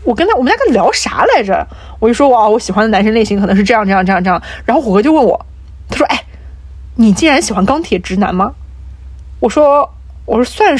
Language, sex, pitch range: Chinese, female, 170-275 Hz